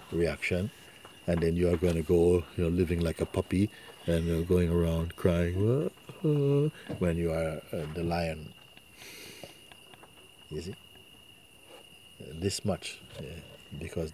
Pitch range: 80-90 Hz